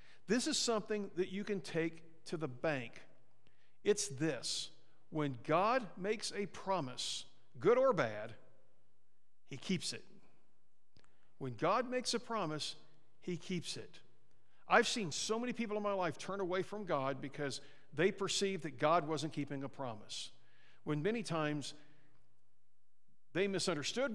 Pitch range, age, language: 135-200 Hz, 50-69, English